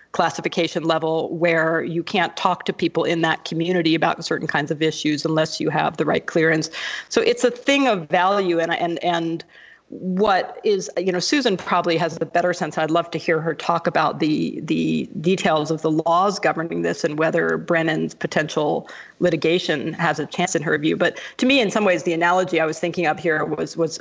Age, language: 40-59, English